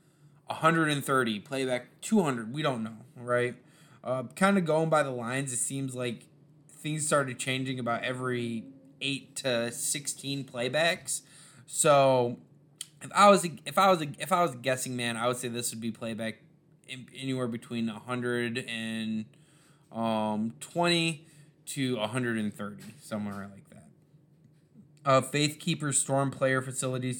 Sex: male